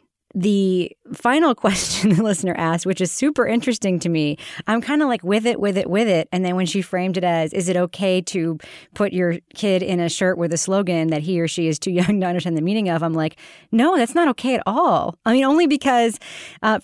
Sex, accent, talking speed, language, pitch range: female, American, 240 wpm, English, 165-220 Hz